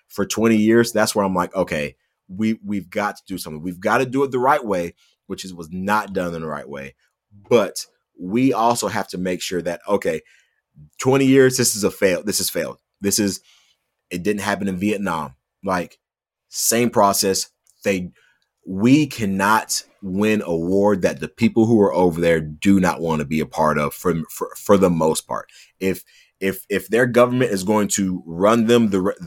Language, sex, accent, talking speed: English, male, American, 195 wpm